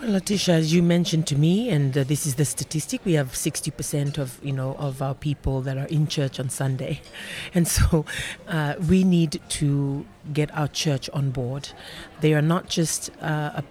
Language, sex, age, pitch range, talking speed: English, female, 40-59, 140-165 Hz, 200 wpm